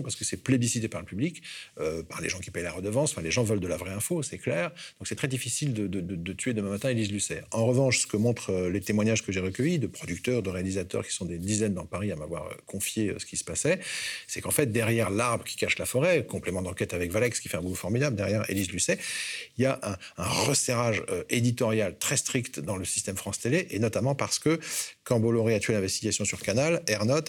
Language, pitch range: French, 100-130 Hz